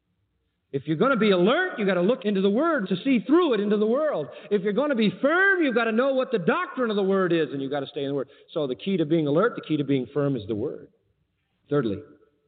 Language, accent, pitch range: English, American, 135-195 Hz